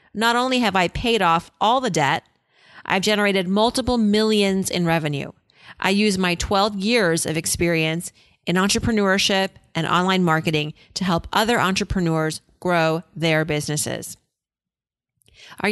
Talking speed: 135 wpm